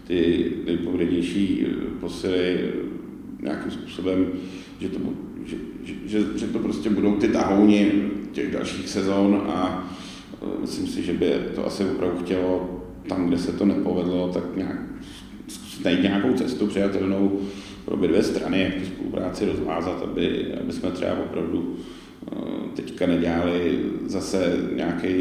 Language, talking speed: Czech, 135 wpm